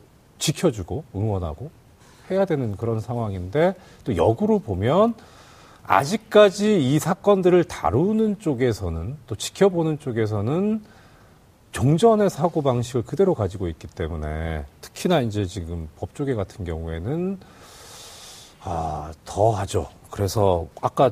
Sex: male